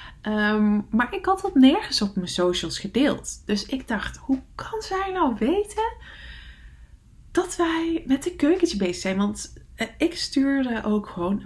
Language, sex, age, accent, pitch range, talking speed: English, female, 20-39, Dutch, 200-285 Hz, 160 wpm